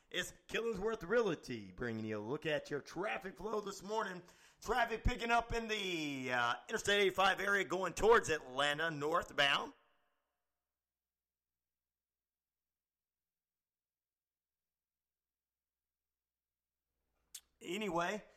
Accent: American